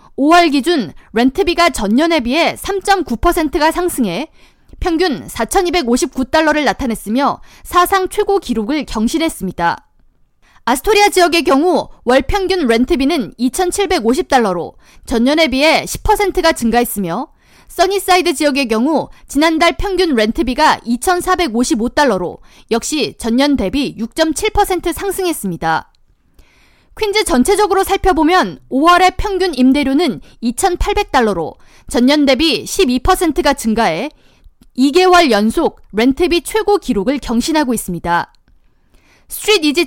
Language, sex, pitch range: Korean, female, 250-355 Hz